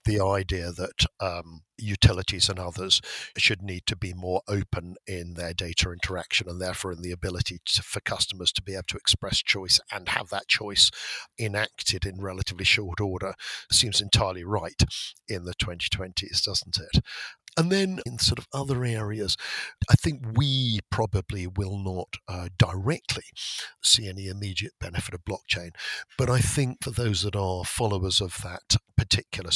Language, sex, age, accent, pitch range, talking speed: English, male, 50-69, British, 90-110 Hz, 160 wpm